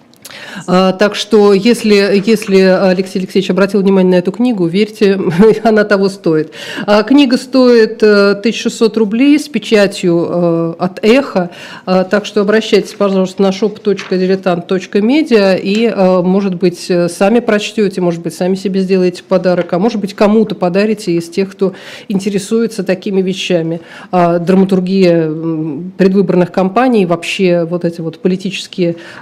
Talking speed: 120 wpm